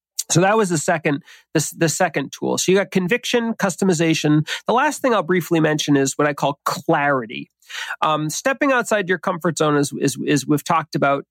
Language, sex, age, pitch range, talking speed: English, male, 40-59, 150-190 Hz, 200 wpm